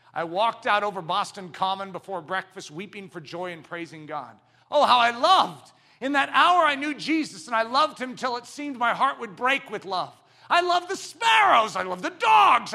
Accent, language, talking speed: American, English, 210 wpm